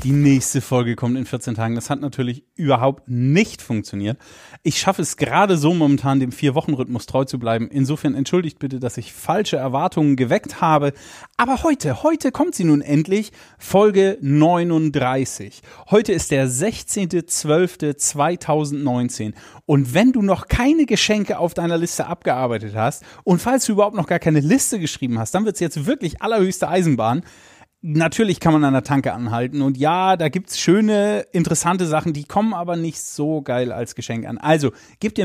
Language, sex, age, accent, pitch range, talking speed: German, male, 30-49, German, 135-185 Hz, 170 wpm